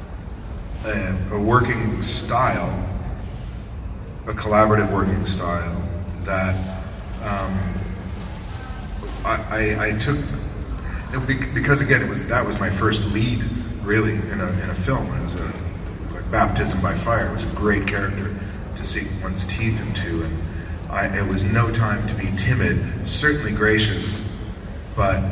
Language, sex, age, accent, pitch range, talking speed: English, male, 40-59, American, 95-110 Hz, 135 wpm